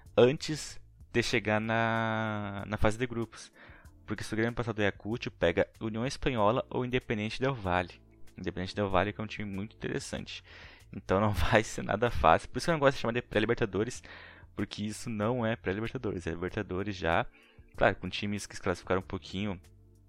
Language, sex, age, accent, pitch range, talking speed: Portuguese, male, 20-39, Brazilian, 90-110 Hz, 190 wpm